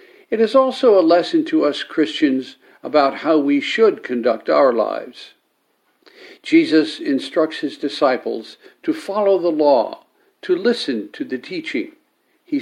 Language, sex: English, male